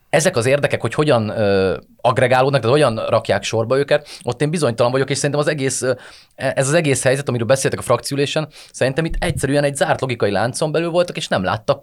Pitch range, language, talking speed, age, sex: 110-145 Hz, Hungarian, 195 wpm, 30-49, male